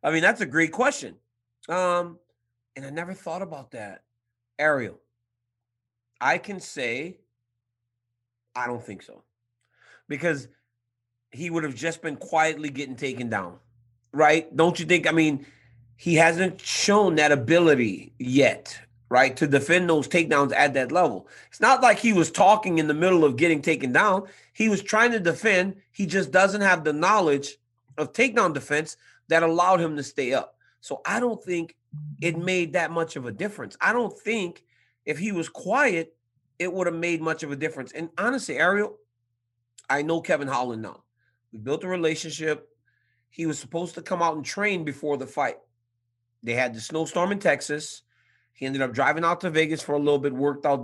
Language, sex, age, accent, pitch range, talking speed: English, male, 30-49, American, 120-170 Hz, 180 wpm